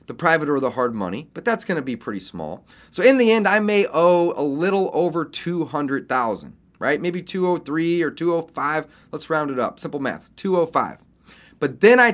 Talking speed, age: 230 wpm, 30-49